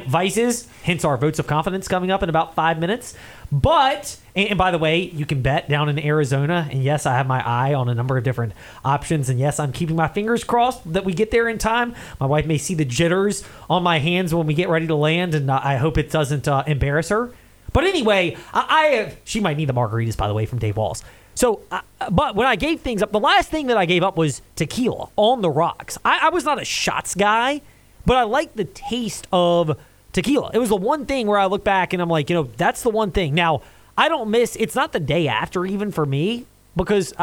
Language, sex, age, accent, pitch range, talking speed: English, male, 30-49, American, 150-205 Hz, 245 wpm